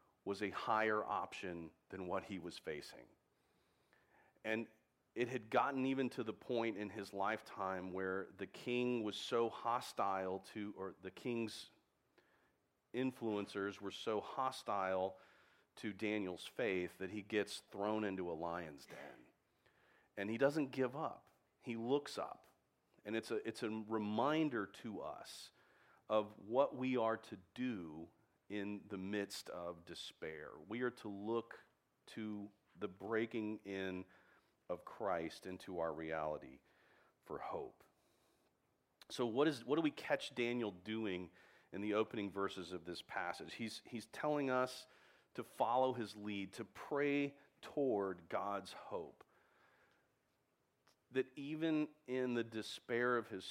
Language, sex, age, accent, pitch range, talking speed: English, male, 40-59, American, 95-120 Hz, 140 wpm